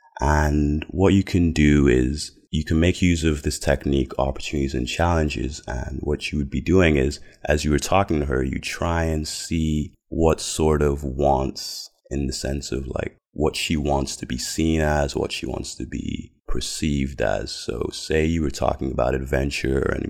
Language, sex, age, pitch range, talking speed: English, male, 30-49, 65-80 Hz, 190 wpm